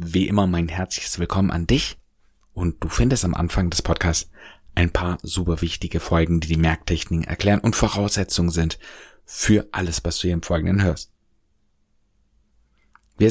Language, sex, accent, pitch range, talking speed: German, male, German, 80-100 Hz, 160 wpm